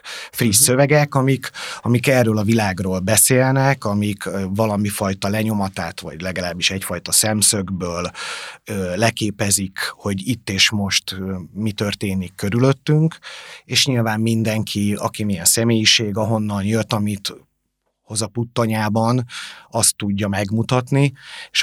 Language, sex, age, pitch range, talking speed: Hungarian, male, 30-49, 100-120 Hz, 115 wpm